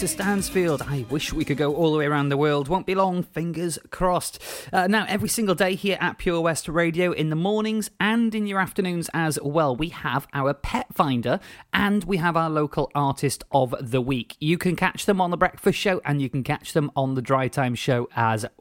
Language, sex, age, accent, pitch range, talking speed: English, male, 30-49, British, 135-190 Hz, 225 wpm